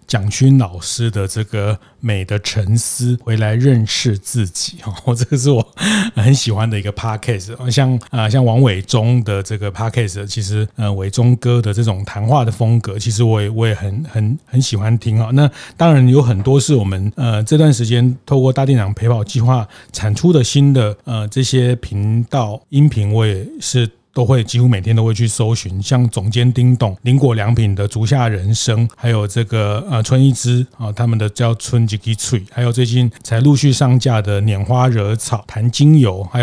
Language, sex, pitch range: Chinese, male, 110-130 Hz